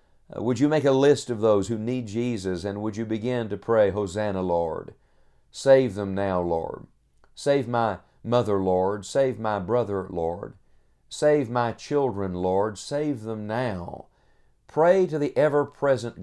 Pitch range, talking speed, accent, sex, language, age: 100-125 Hz, 150 wpm, American, male, English, 50-69